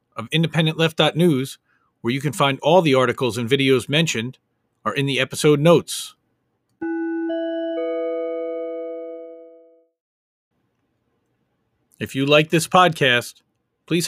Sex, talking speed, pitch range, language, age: male, 100 wpm, 135-170 Hz, English, 40-59